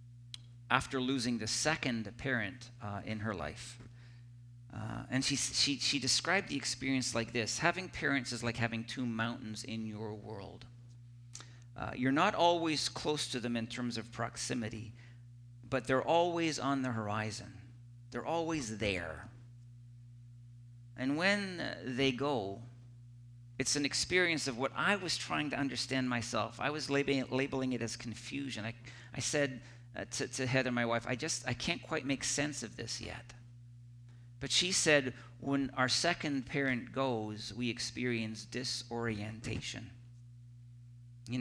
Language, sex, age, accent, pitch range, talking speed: English, male, 50-69, American, 120-135 Hz, 150 wpm